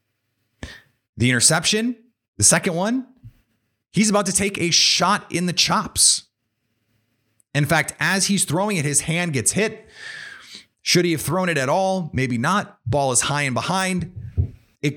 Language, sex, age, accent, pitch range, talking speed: English, male, 30-49, American, 115-165 Hz, 155 wpm